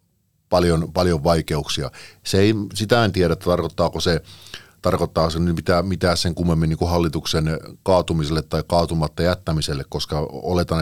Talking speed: 145 wpm